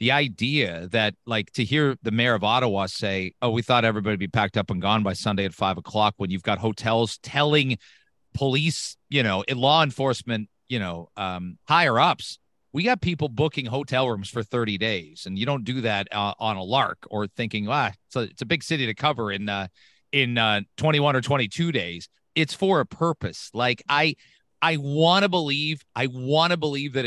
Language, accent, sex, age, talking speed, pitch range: English, American, male, 40-59, 205 wpm, 110-150 Hz